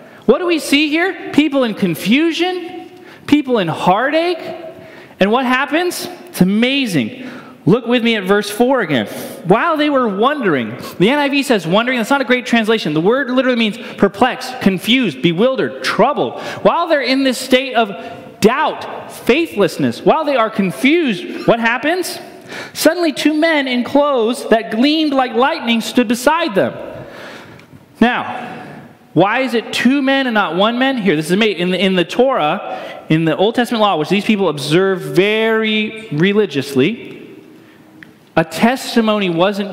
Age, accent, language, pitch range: 30-49, American, English, 165-260 Hz